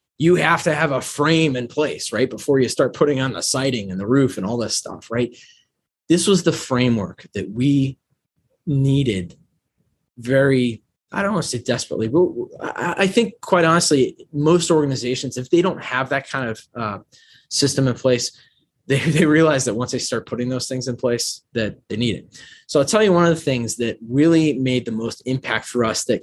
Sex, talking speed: male, 200 wpm